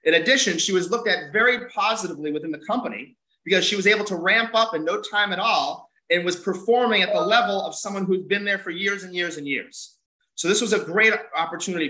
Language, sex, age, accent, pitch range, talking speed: English, male, 30-49, American, 150-210 Hz, 230 wpm